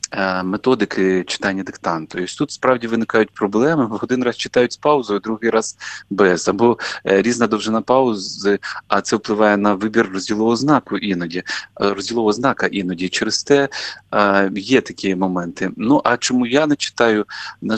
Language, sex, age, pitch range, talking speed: Ukrainian, male, 30-49, 95-120 Hz, 150 wpm